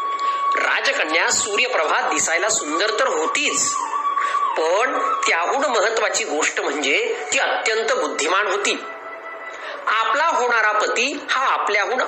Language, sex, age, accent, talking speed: Marathi, male, 40-59, native, 100 wpm